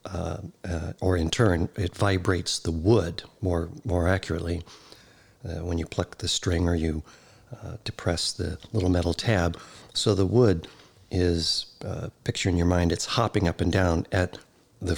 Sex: male